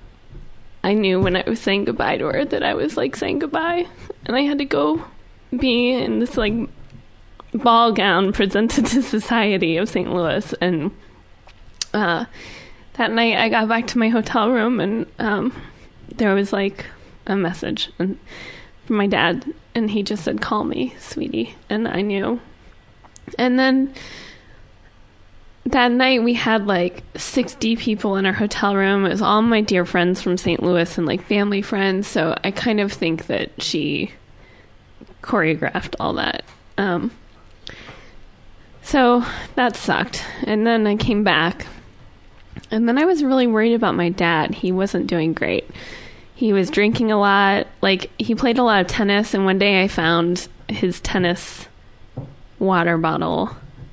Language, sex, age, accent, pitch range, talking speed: English, female, 10-29, American, 180-230 Hz, 160 wpm